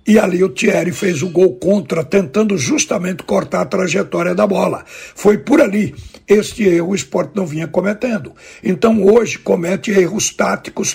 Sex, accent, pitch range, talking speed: male, Brazilian, 180-220 Hz, 165 wpm